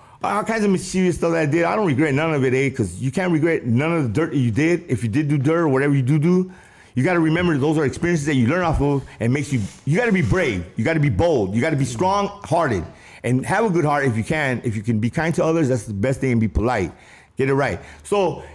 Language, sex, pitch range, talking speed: English, male, 125-185 Hz, 300 wpm